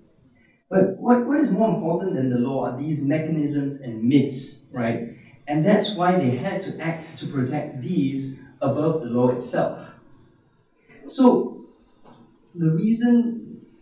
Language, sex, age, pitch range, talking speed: English, male, 30-49, 120-155 Hz, 135 wpm